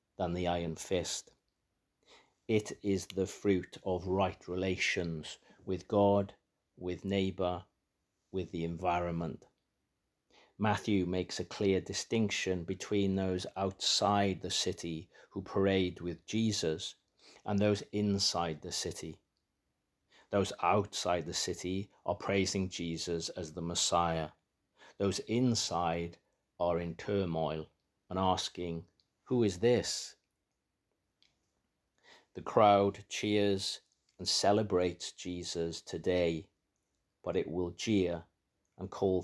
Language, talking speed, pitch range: English, 105 wpm, 85-100 Hz